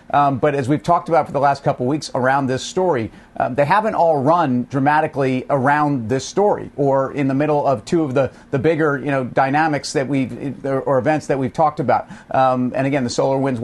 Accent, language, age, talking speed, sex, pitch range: American, English, 40-59, 225 wpm, male, 130-150 Hz